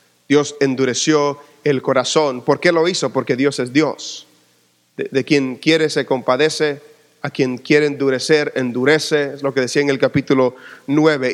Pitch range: 140-175 Hz